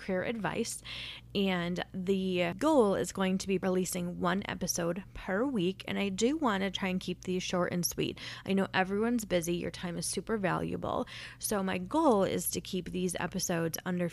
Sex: female